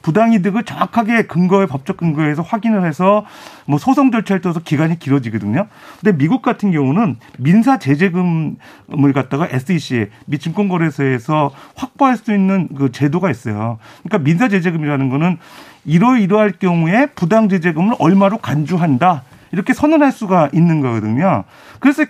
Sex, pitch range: male, 150-225 Hz